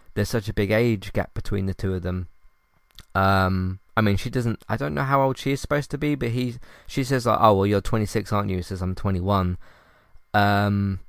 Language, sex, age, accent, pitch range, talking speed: English, male, 20-39, British, 95-115 Hz, 225 wpm